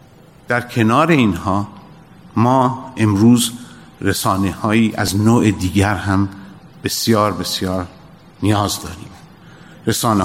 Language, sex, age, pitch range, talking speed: Persian, male, 50-69, 90-115 Hz, 90 wpm